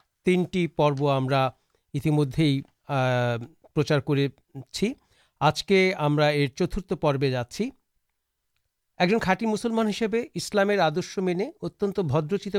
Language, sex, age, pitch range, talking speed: Urdu, male, 50-69, 140-185 Hz, 60 wpm